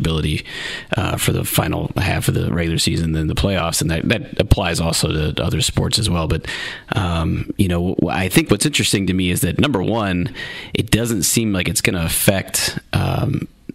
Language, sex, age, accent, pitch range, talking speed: English, male, 30-49, American, 85-110 Hz, 200 wpm